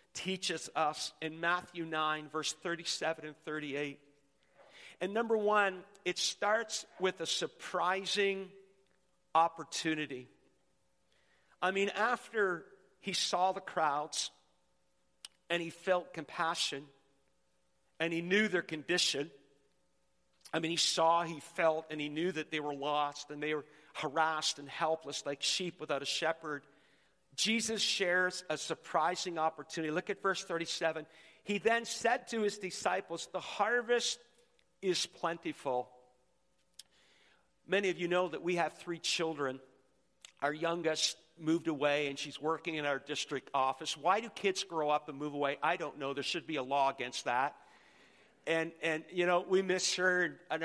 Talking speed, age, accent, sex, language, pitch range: 145 wpm, 50-69, American, male, English, 145-180 Hz